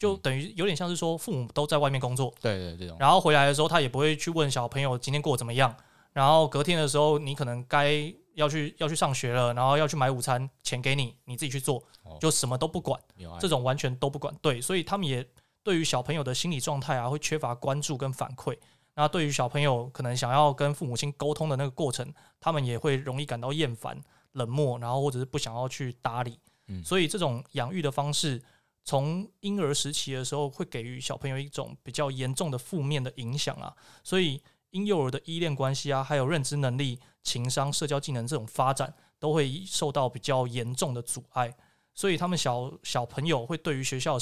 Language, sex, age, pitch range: Chinese, male, 20-39, 130-155 Hz